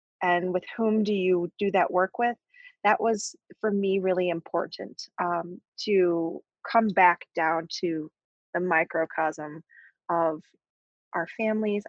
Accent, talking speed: American, 130 wpm